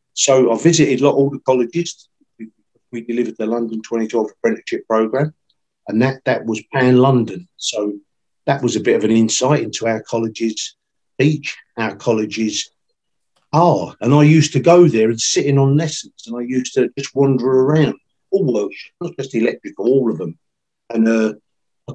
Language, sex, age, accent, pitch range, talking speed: English, male, 50-69, British, 115-145 Hz, 175 wpm